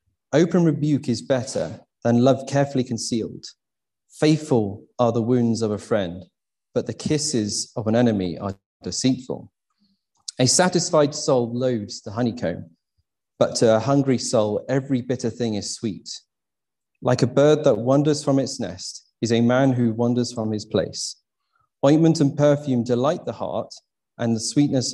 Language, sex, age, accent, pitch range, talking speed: English, male, 30-49, British, 110-135 Hz, 155 wpm